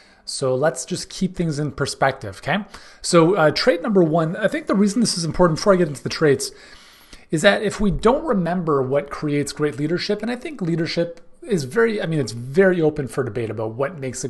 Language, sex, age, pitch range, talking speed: English, male, 30-49, 130-175 Hz, 225 wpm